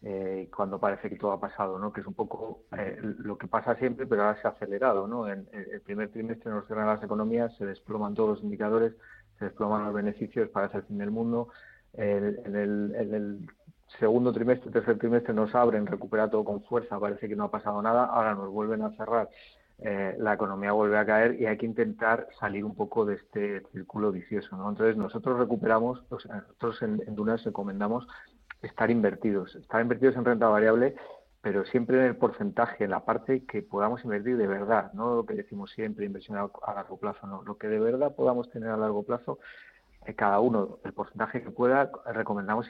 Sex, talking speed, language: male, 205 wpm, Spanish